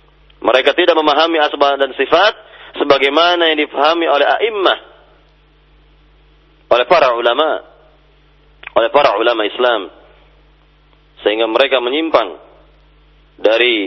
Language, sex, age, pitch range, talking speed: Indonesian, male, 40-59, 135-175 Hz, 95 wpm